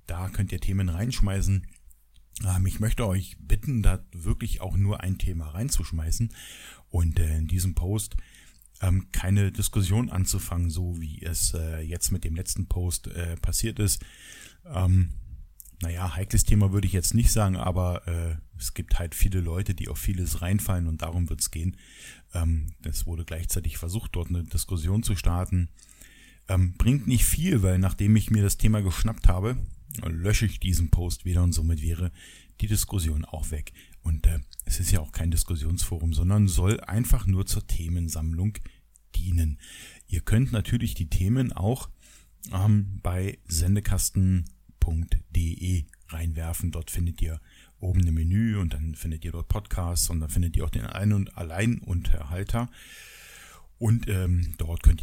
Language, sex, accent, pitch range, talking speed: German, male, German, 85-100 Hz, 150 wpm